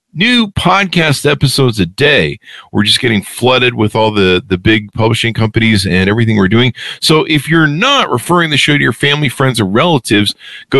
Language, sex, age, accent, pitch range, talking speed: English, male, 50-69, American, 95-140 Hz, 190 wpm